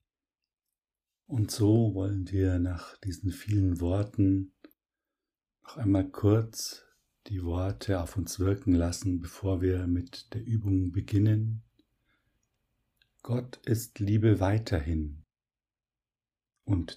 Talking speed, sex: 100 wpm, male